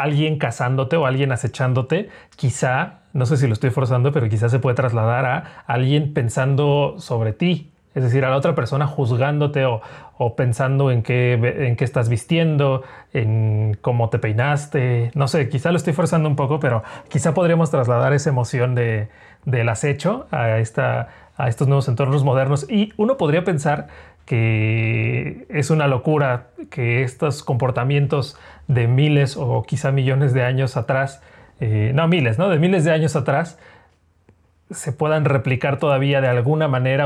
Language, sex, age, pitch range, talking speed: Spanish, male, 30-49, 125-155 Hz, 160 wpm